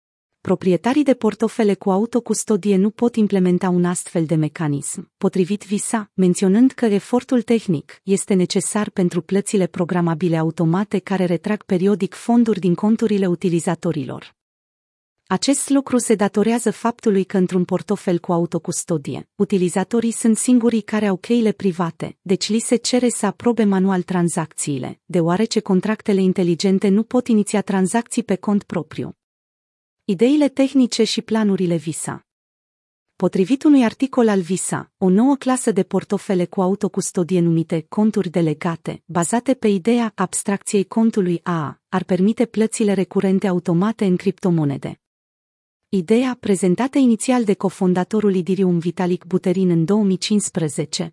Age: 30-49